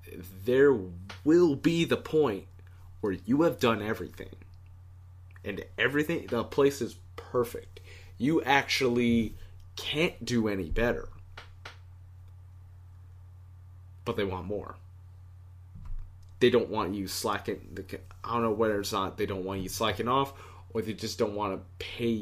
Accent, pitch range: American, 90-105 Hz